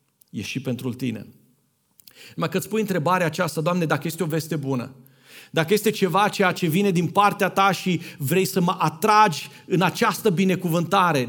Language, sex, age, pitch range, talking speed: Romanian, male, 40-59, 170-235 Hz, 175 wpm